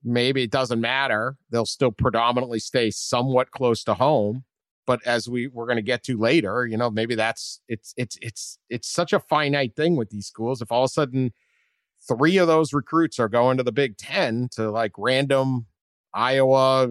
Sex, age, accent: male, 40-59, American